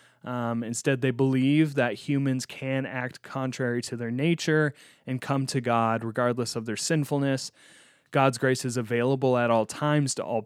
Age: 20-39